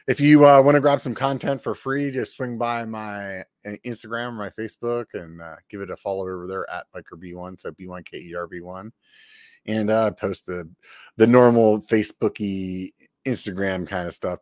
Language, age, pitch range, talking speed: English, 30-49, 100-125 Hz, 170 wpm